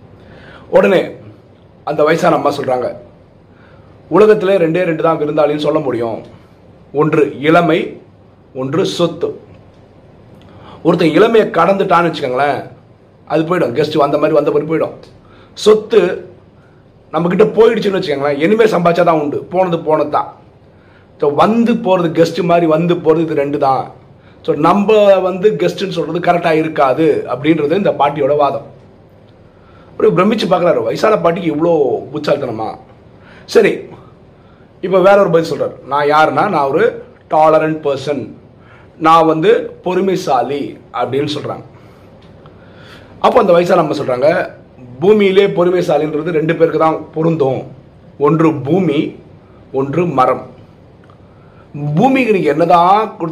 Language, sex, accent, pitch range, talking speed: Tamil, male, native, 140-180 Hz, 80 wpm